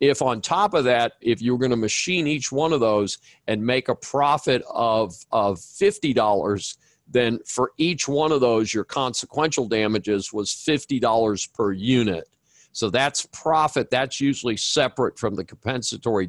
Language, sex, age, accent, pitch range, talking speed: English, male, 50-69, American, 110-140 Hz, 155 wpm